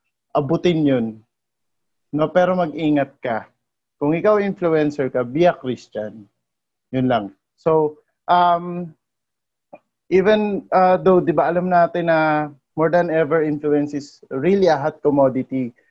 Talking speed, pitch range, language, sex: 135 wpm, 135-165 Hz, English, male